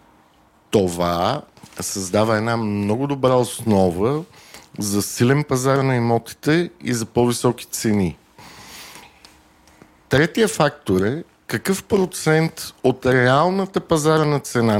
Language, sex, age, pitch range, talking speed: Bulgarian, male, 50-69, 115-150 Hz, 95 wpm